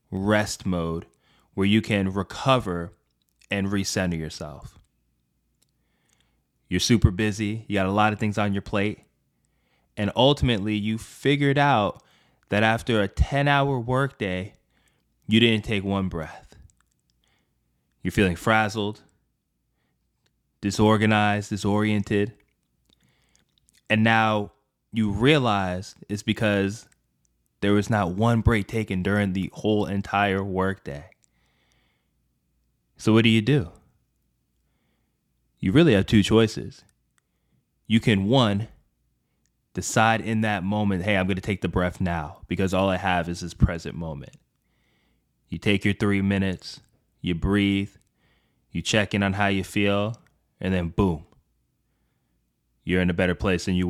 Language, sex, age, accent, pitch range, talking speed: English, male, 20-39, American, 90-110 Hz, 130 wpm